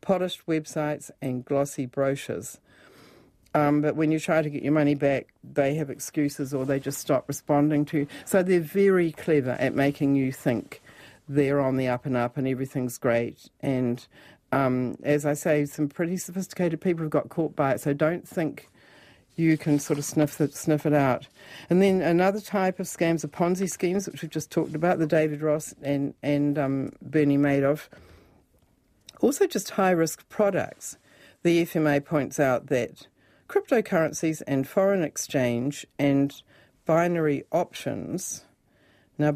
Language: English